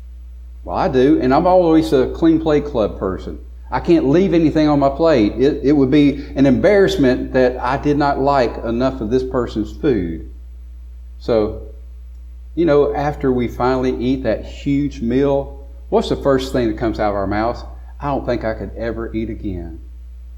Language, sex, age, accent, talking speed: English, male, 40-59, American, 185 wpm